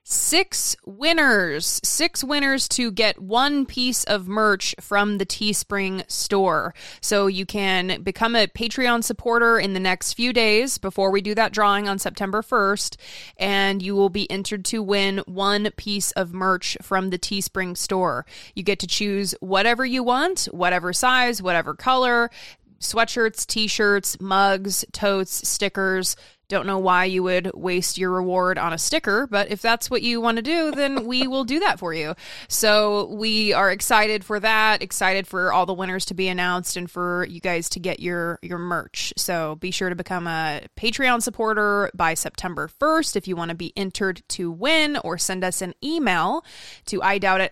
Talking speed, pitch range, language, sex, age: 175 wpm, 180-225 Hz, English, female, 20-39